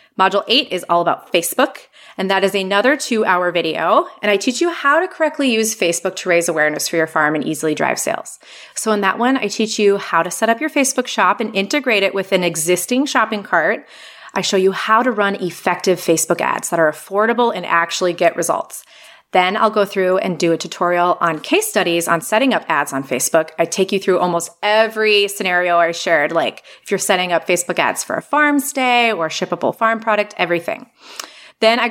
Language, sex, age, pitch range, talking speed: English, female, 30-49, 175-220 Hz, 215 wpm